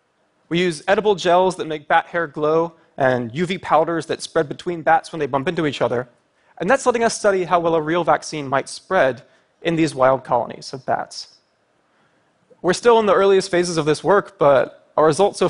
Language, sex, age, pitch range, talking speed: Russian, male, 20-39, 145-180 Hz, 205 wpm